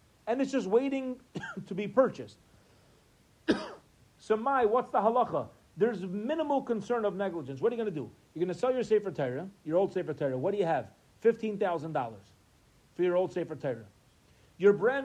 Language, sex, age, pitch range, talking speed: English, male, 40-59, 165-225 Hz, 190 wpm